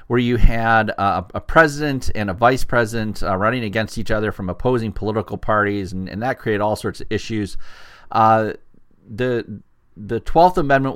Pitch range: 100-120 Hz